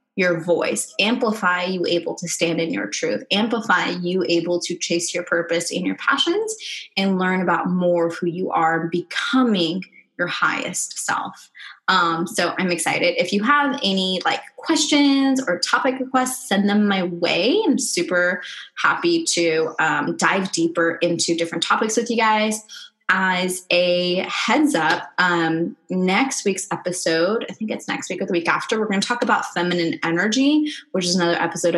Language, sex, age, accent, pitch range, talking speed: English, female, 20-39, American, 175-240 Hz, 170 wpm